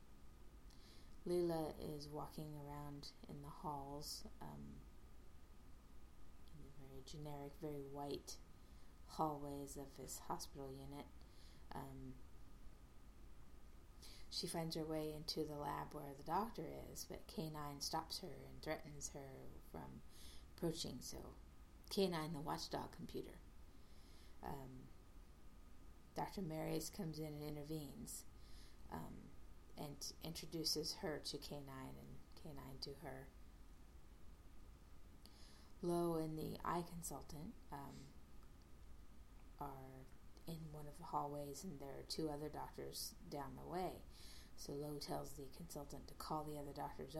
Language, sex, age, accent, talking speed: English, female, 30-49, American, 120 wpm